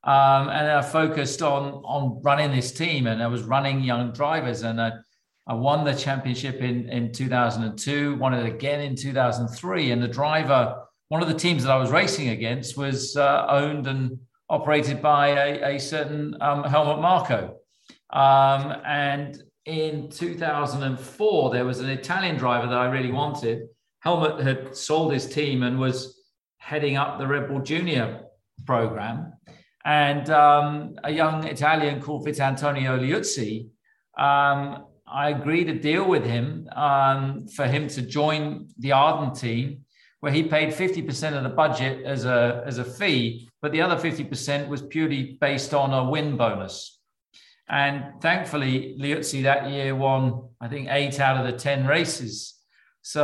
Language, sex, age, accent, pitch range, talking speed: English, male, 40-59, British, 130-150 Hz, 160 wpm